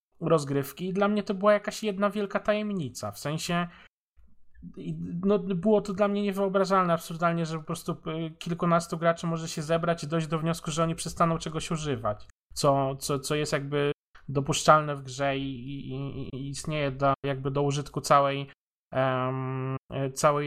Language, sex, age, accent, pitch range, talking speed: Polish, male, 20-39, native, 135-165 Hz, 150 wpm